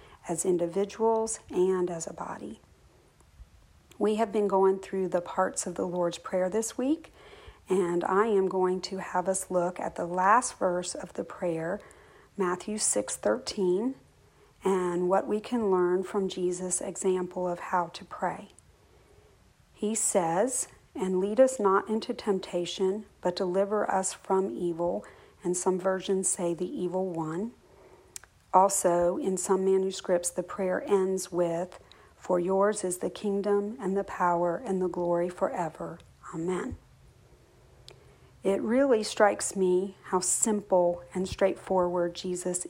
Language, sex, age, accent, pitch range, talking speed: English, female, 40-59, American, 180-200 Hz, 140 wpm